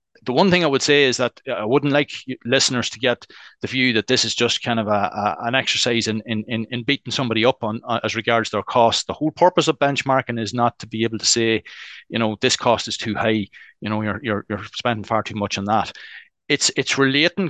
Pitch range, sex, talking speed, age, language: 110-130 Hz, male, 245 wpm, 30-49, English